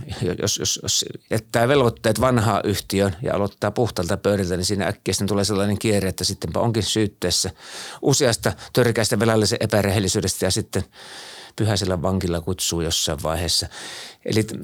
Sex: male